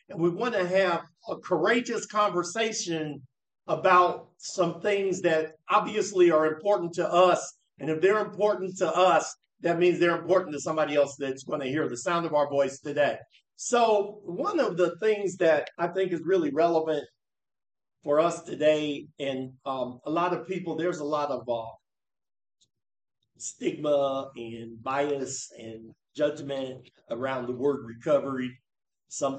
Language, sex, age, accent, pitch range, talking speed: English, male, 50-69, American, 130-180 Hz, 155 wpm